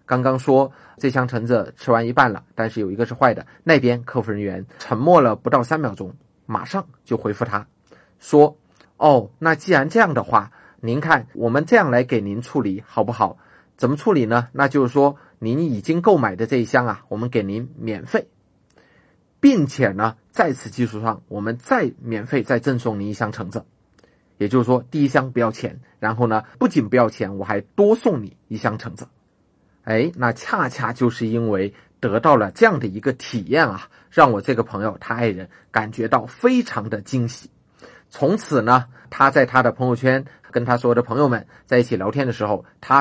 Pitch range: 110-135 Hz